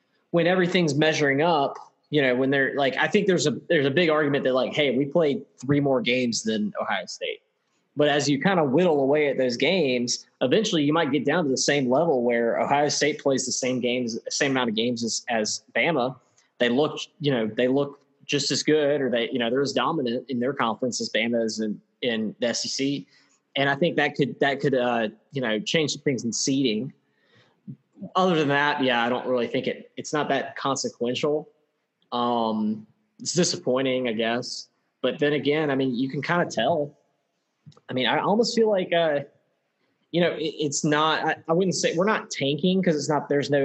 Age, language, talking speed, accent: 20-39, English, 215 wpm, American